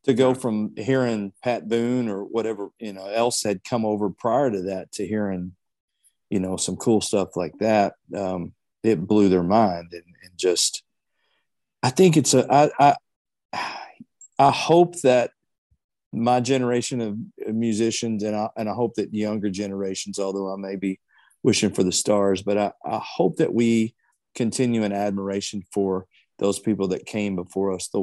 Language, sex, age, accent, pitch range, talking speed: English, male, 40-59, American, 95-115 Hz, 170 wpm